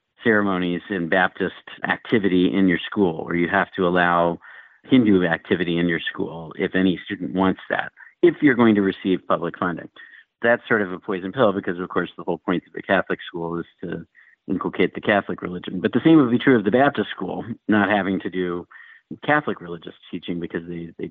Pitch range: 90-110 Hz